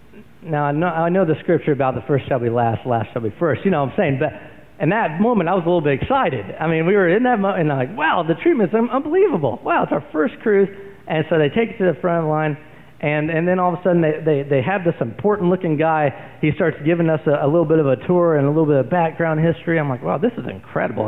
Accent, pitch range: American, 140-175 Hz